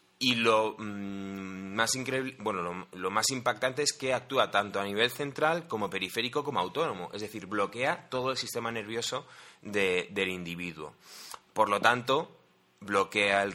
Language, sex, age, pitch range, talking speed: Spanish, male, 20-39, 105-135 Hz, 160 wpm